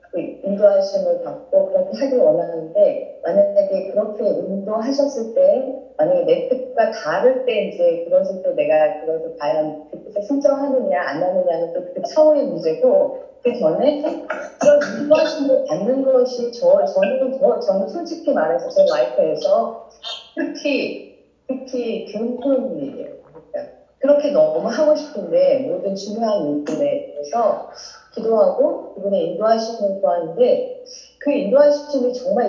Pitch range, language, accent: 200-295 Hz, Korean, native